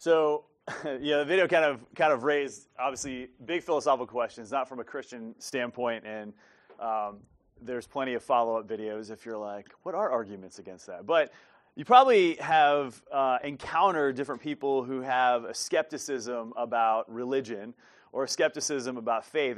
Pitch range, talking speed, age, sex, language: 115-145 Hz, 155 wpm, 30-49, male, English